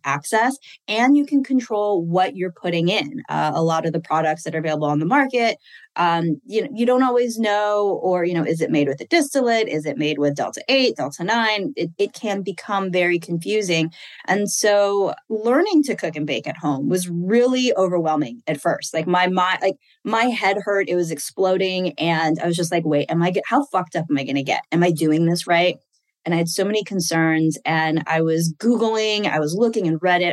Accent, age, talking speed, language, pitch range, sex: American, 20-39, 220 wpm, English, 165-230 Hz, female